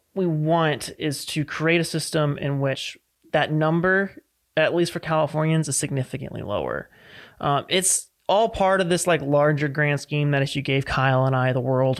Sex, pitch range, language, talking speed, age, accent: male, 135-165 Hz, English, 185 wpm, 30-49, American